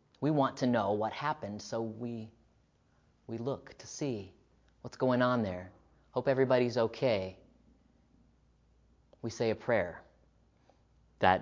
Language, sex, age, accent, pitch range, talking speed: English, male, 30-49, American, 105-130 Hz, 125 wpm